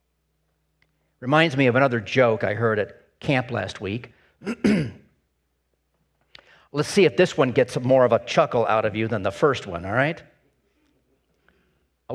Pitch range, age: 100-155 Hz, 50-69